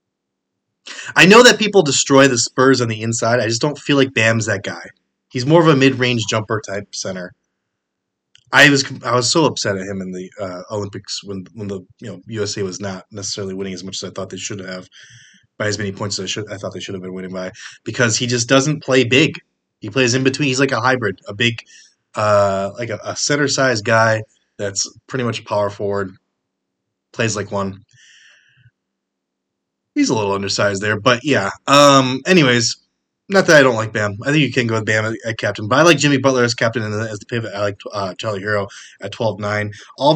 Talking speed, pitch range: 225 wpm, 100-130 Hz